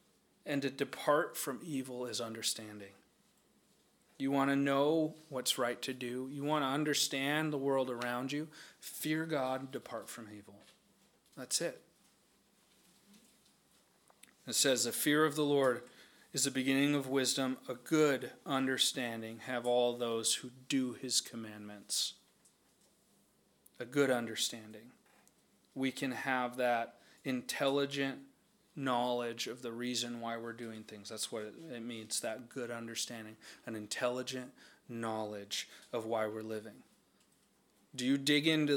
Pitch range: 120-140 Hz